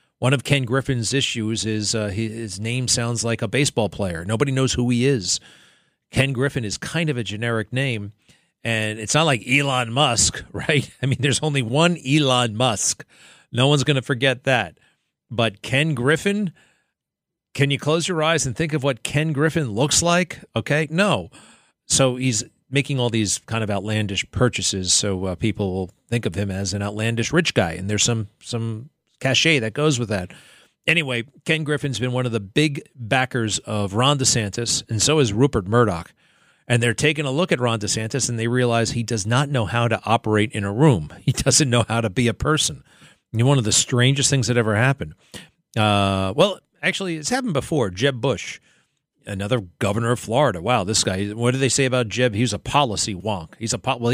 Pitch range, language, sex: 110-140 Hz, English, male